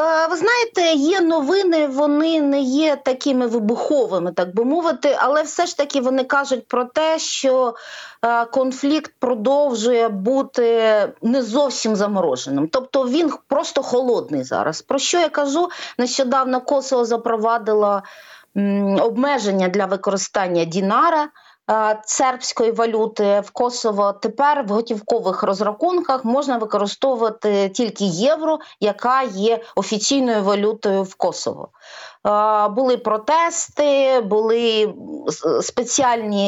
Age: 40-59